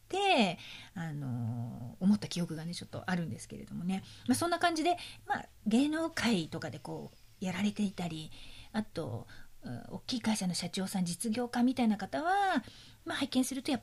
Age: 40-59